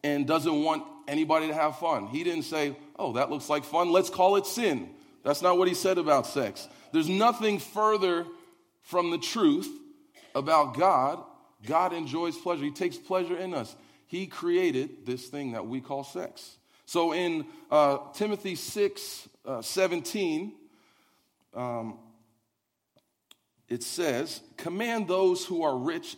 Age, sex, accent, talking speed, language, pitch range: 40-59, male, American, 150 wpm, English, 130-200 Hz